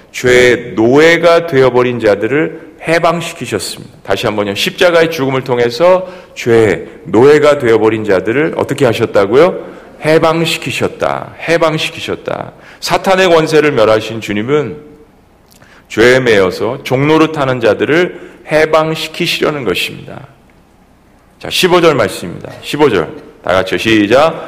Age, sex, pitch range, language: 40-59, male, 130-165 Hz, Korean